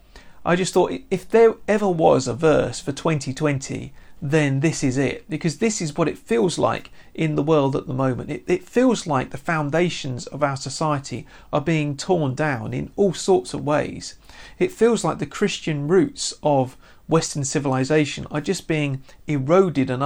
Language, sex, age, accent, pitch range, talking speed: English, male, 40-59, British, 135-165 Hz, 180 wpm